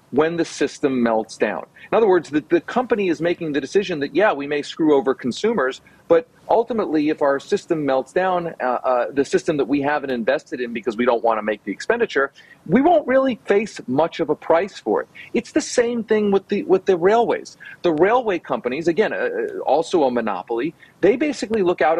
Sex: male